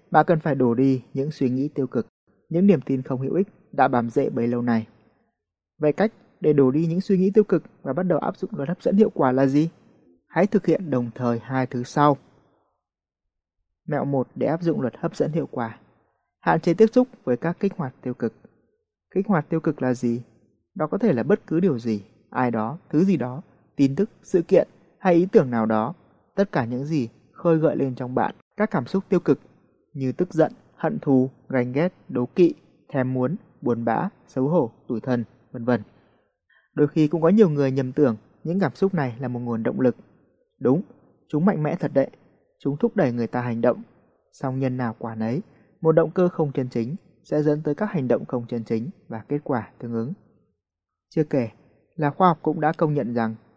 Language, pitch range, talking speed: Vietnamese, 125-175 Hz, 220 wpm